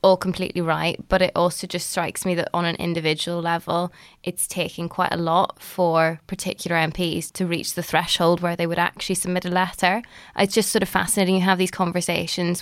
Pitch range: 175-190 Hz